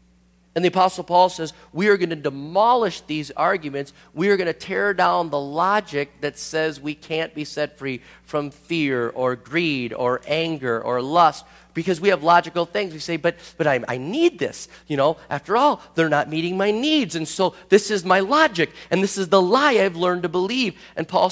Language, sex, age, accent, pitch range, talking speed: English, male, 40-59, American, 130-180 Hz, 210 wpm